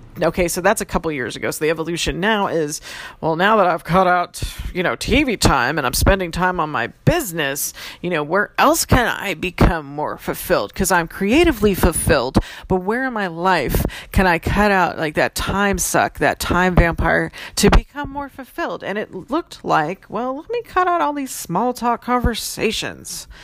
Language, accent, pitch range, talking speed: English, American, 160-210 Hz, 195 wpm